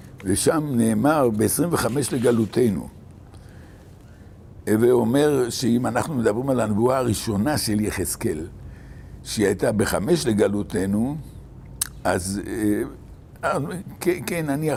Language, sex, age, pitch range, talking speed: Hebrew, male, 60-79, 110-145 Hz, 95 wpm